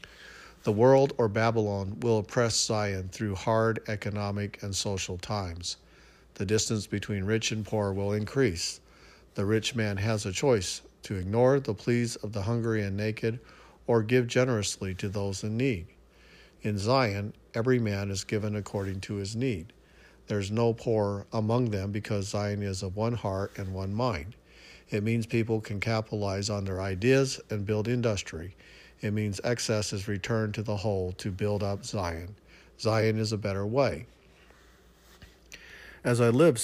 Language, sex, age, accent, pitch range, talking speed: English, male, 50-69, American, 100-115 Hz, 160 wpm